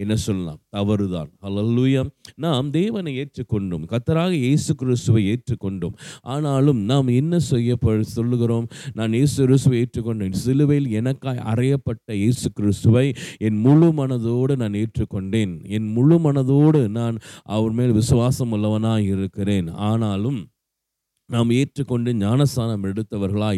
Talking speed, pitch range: 110 wpm, 110-140 Hz